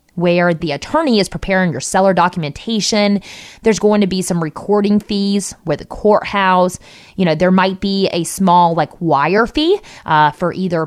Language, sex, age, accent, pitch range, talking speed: English, female, 20-39, American, 170-210 Hz, 170 wpm